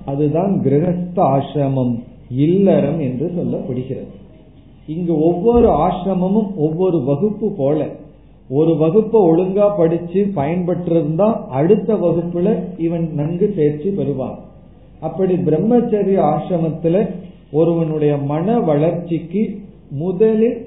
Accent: native